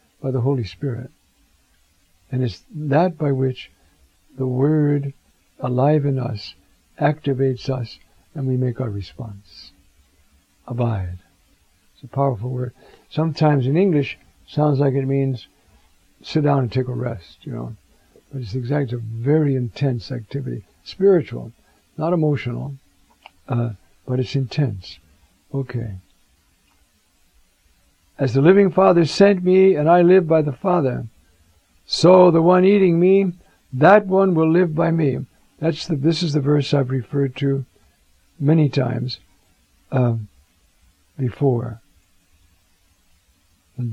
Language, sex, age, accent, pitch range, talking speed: English, male, 60-79, American, 90-150 Hz, 130 wpm